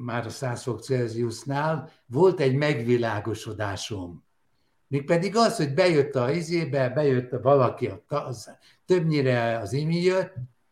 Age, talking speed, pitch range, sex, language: 60-79, 105 wpm, 120-160 Hz, male, Hungarian